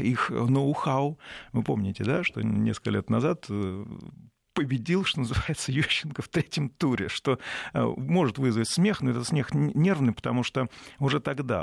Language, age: Russian, 40-59